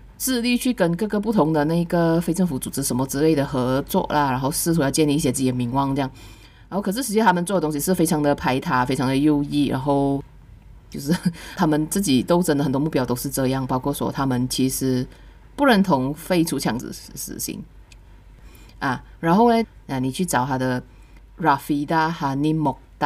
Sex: female